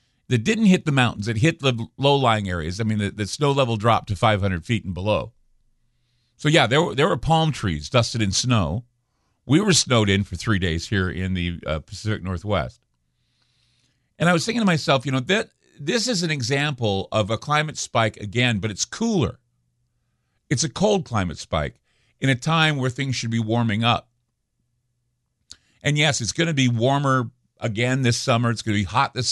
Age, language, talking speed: 50-69, English, 200 wpm